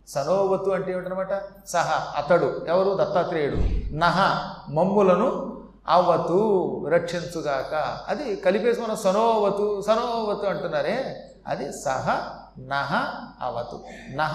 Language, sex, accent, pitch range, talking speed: Telugu, male, native, 170-225 Hz, 90 wpm